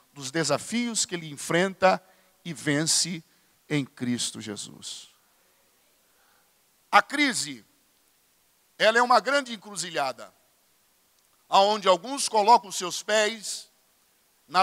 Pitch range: 165-220 Hz